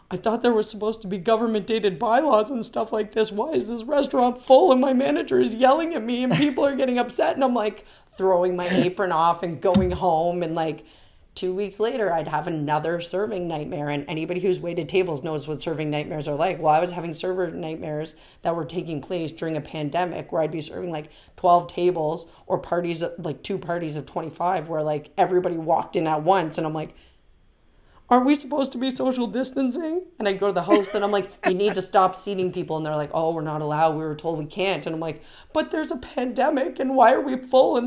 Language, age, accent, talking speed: English, 30-49, American, 230 wpm